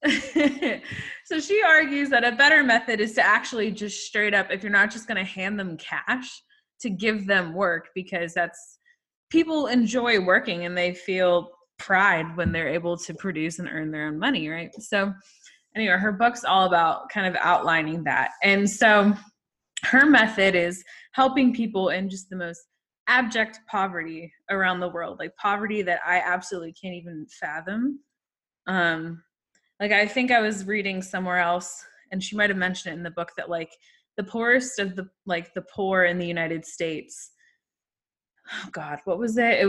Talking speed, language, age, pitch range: 175 wpm, English, 20-39, 170-220 Hz